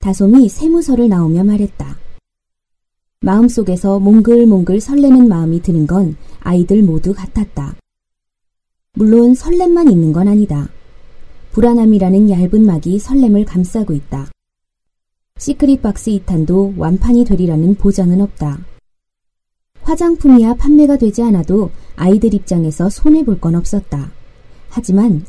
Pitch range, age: 175-240 Hz, 20-39